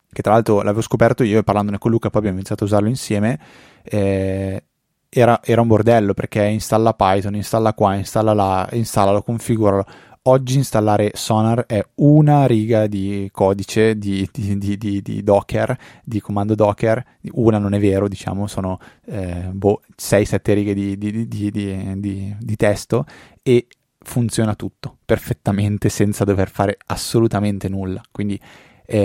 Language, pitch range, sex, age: Italian, 100-110 Hz, male, 20-39